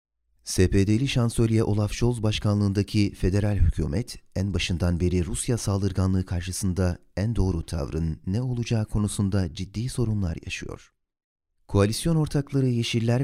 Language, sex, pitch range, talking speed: Turkish, male, 90-110 Hz, 115 wpm